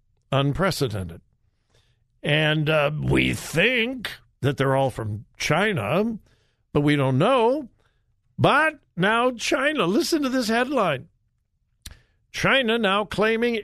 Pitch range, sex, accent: 125-200 Hz, male, American